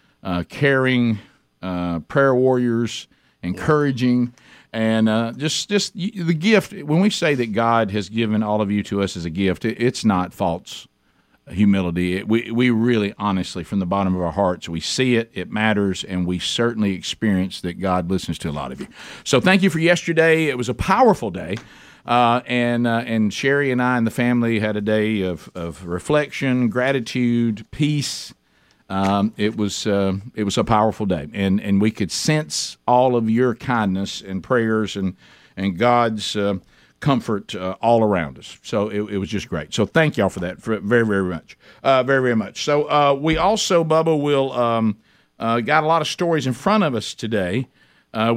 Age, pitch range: 50-69, 100-135 Hz